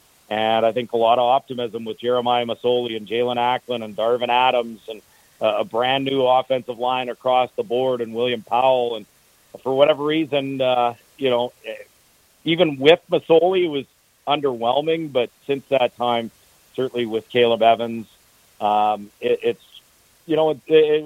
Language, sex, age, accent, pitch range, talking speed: English, male, 40-59, American, 115-130 Hz, 150 wpm